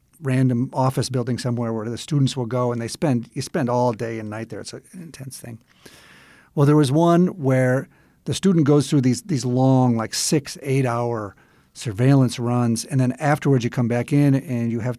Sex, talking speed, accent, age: male, 200 wpm, American, 50-69